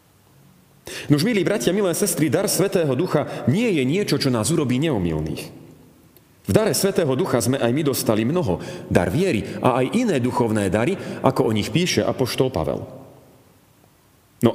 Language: Slovak